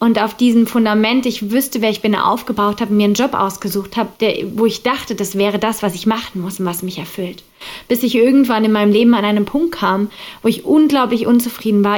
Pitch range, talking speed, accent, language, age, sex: 200-235 Hz, 225 wpm, German, German, 20-39, female